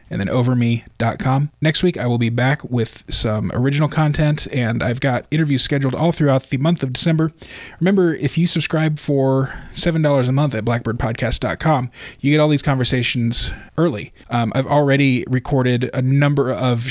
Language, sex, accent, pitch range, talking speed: English, male, American, 125-145 Hz, 165 wpm